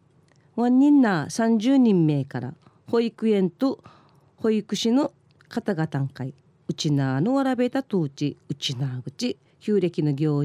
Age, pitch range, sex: 40-59, 145-220 Hz, female